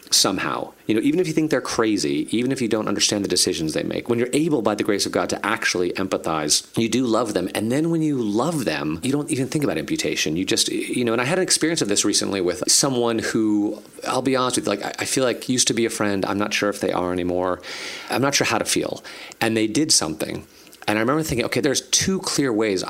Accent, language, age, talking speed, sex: American, English, 40-59, 260 wpm, male